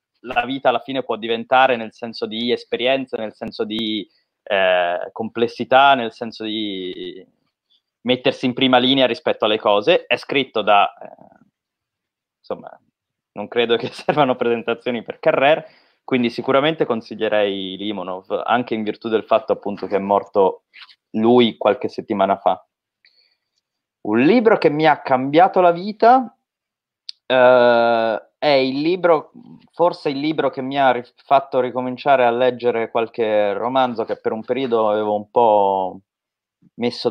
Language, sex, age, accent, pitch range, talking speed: Italian, male, 20-39, native, 115-140 Hz, 140 wpm